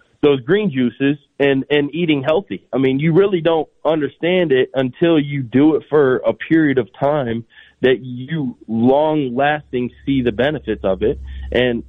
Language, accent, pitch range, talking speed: English, American, 120-145 Hz, 165 wpm